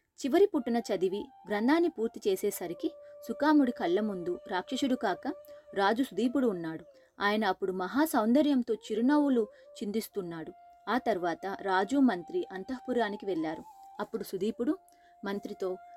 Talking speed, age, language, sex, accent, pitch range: 110 wpm, 30-49, Telugu, female, native, 200-290 Hz